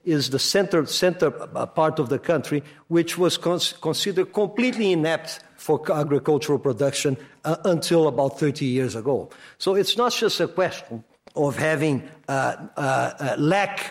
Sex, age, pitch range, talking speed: male, 50-69, 140-180 Hz, 150 wpm